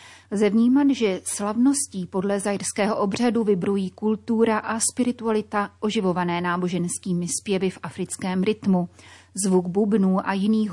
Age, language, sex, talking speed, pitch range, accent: 30-49, Czech, female, 110 wpm, 185-220 Hz, native